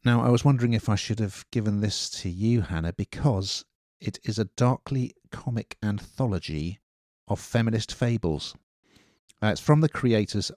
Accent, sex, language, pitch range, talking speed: British, male, English, 85-110 Hz, 160 wpm